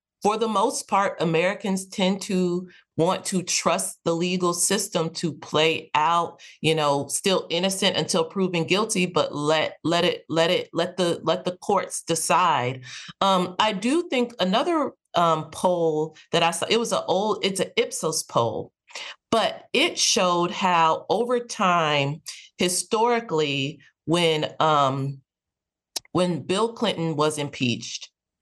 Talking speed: 140 wpm